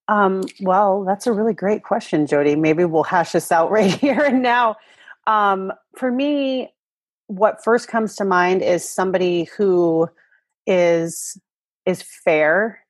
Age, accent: 30-49, American